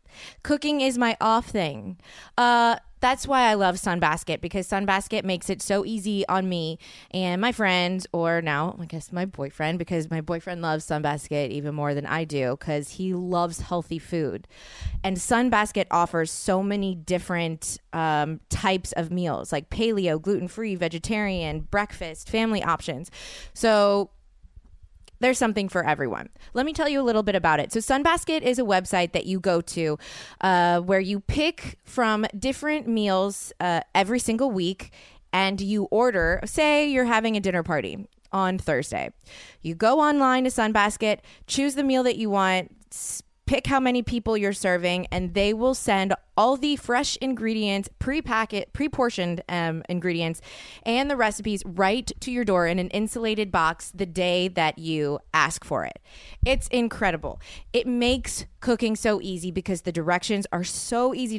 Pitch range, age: 170-230 Hz, 20-39